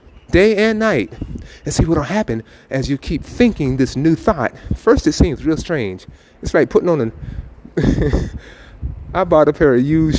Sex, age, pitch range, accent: male, 30-49, 125-195 Hz, American